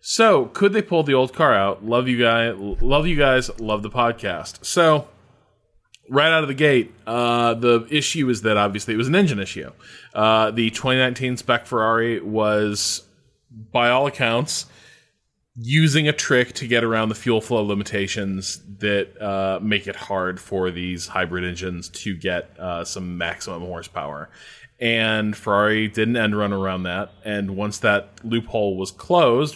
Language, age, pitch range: English, 20-39, 100-135 Hz